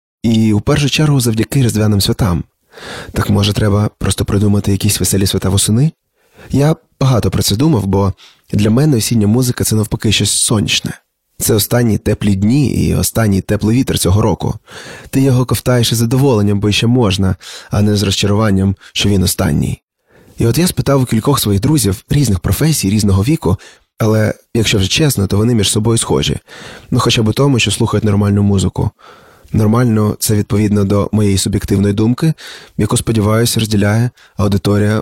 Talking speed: 170 wpm